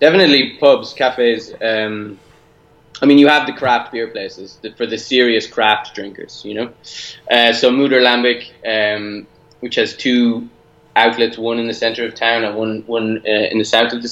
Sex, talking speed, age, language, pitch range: male, 185 wpm, 20-39, English, 110-125 Hz